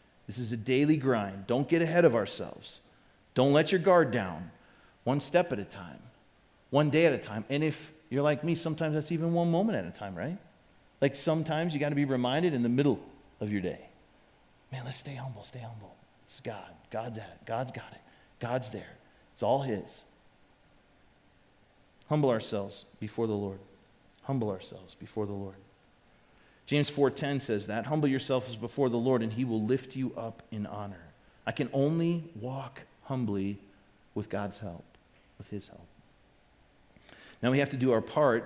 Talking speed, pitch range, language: 180 wpm, 110-140 Hz, English